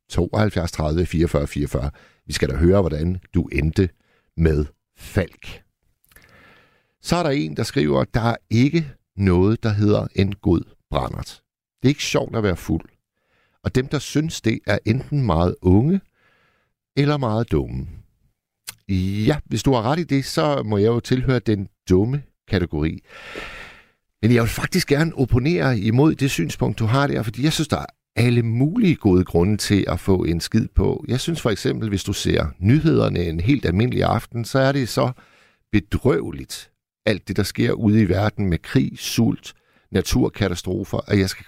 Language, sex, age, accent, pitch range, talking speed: Danish, male, 60-79, native, 95-130 Hz, 175 wpm